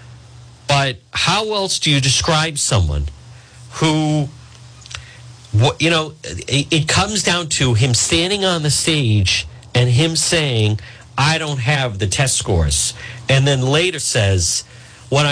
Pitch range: 115-150 Hz